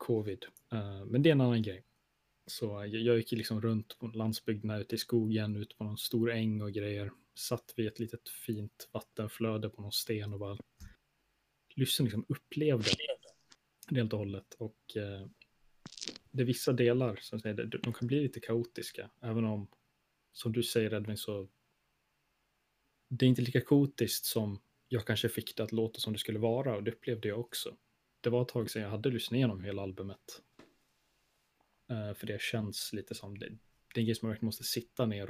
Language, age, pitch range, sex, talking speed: Swedish, 20-39, 105-120 Hz, male, 185 wpm